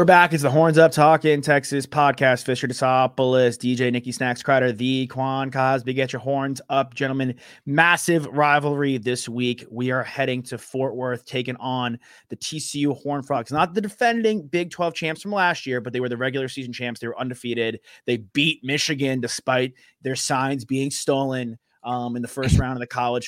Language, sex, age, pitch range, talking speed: English, male, 30-49, 105-135 Hz, 195 wpm